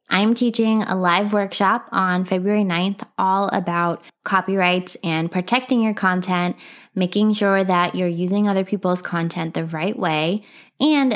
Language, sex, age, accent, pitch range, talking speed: English, female, 20-39, American, 175-220 Hz, 145 wpm